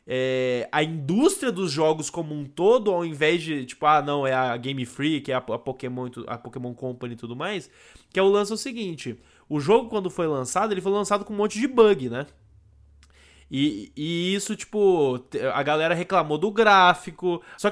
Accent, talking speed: Brazilian, 195 wpm